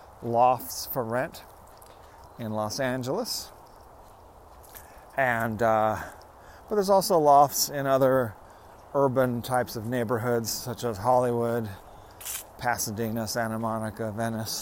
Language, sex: English, male